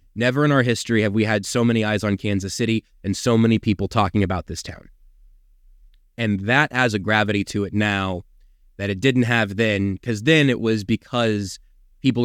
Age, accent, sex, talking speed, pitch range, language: 30-49, American, male, 195 wpm, 100-120 Hz, English